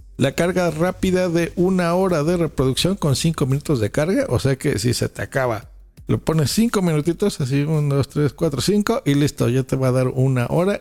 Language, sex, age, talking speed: Spanish, male, 50-69, 215 wpm